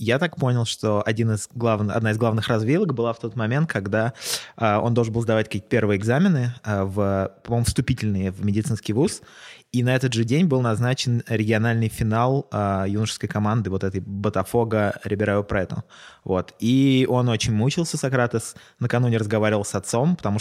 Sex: male